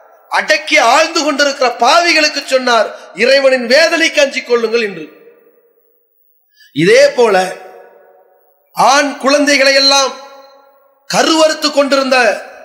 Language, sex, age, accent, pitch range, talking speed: English, male, 30-49, Indian, 255-305 Hz, 85 wpm